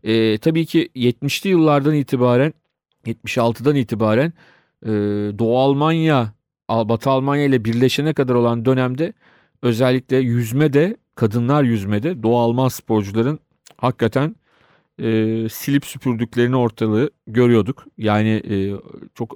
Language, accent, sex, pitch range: Turkish, native, male, 110-135 Hz